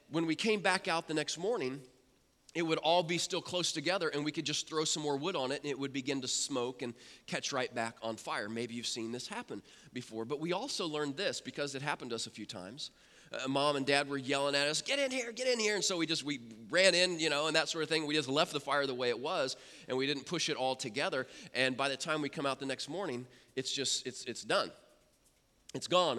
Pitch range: 125-180 Hz